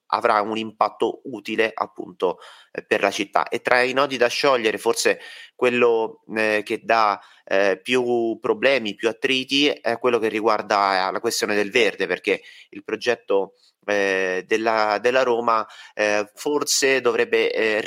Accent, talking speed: native, 150 wpm